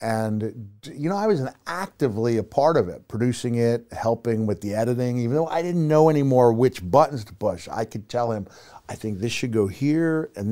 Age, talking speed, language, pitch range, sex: 50-69, 215 wpm, English, 105-130 Hz, male